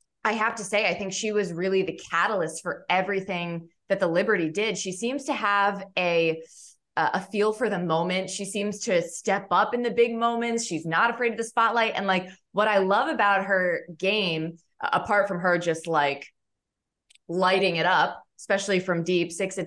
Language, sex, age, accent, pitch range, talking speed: English, female, 20-39, American, 175-220 Hz, 190 wpm